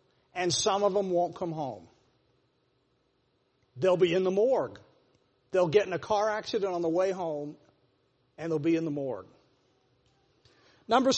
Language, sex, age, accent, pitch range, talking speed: English, male, 50-69, American, 175-240 Hz, 155 wpm